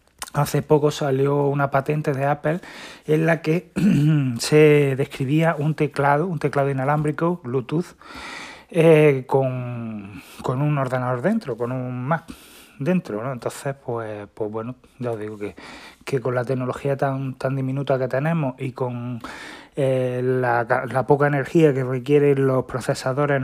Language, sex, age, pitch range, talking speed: Spanish, male, 30-49, 125-145 Hz, 145 wpm